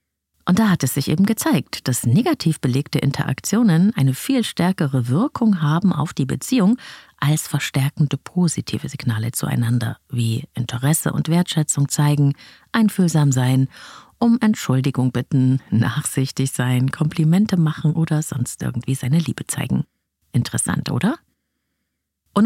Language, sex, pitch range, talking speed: German, female, 125-175 Hz, 125 wpm